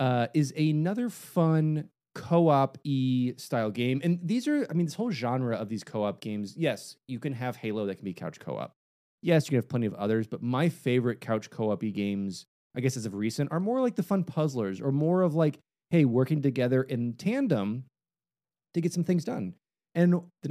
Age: 30-49